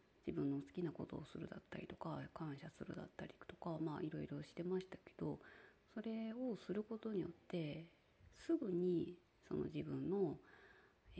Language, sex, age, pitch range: Japanese, female, 30-49, 160-220 Hz